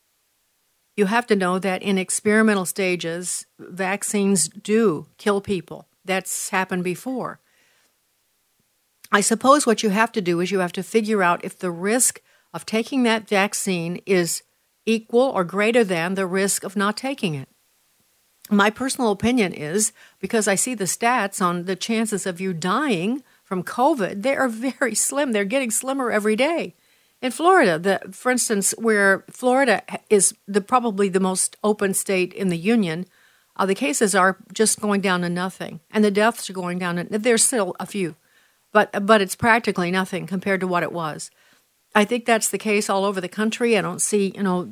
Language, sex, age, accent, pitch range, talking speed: English, female, 60-79, American, 185-225 Hz, 180 wpm